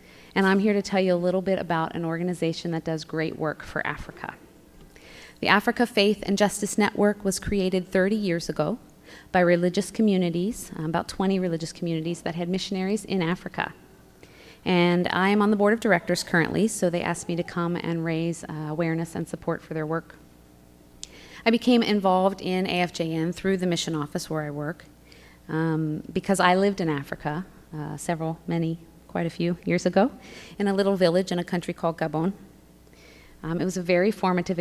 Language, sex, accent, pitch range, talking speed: English, female, American, 160-190 Hz, 180 wpm